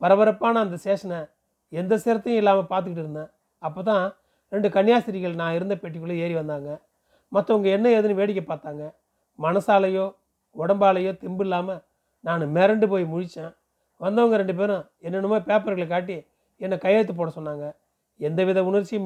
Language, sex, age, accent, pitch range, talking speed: Tamil, male, 30-49, native, 175-210 Hz, 130 wpm